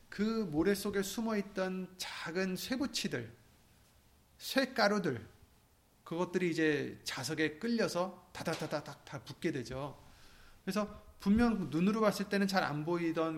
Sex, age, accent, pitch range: male, 30-49, native, 145-205 Hz